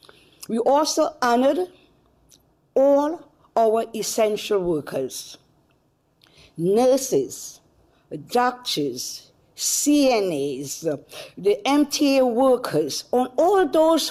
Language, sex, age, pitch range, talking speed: English, female, 50-69, 180-285 Hz, 70 wpm